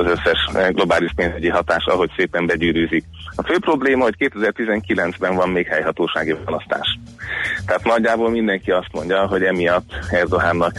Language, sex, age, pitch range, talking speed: Hungarian, male, 30-49, 90-100 Hz, 140 wpm